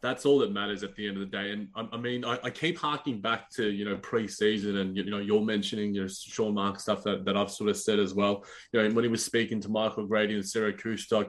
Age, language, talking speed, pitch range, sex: 20-39, English, 280 wpm, 105-130 Hz, male